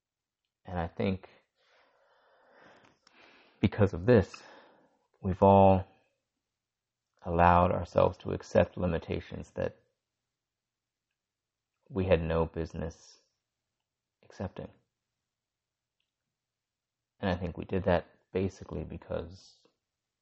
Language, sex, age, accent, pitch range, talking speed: English, male, 30-49, American, 85-110 Hz, 80 wpm